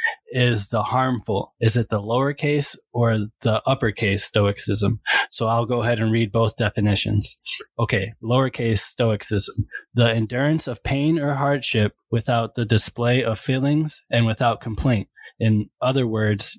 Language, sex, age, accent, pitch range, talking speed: English, male, 20-39, American, 110-130 Hz, 140 wpm